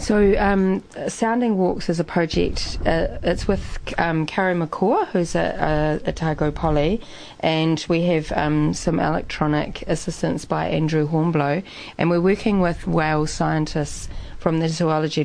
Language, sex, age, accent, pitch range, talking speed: English, female, 30-49, Australian, 150-180 Hz, 140 wpm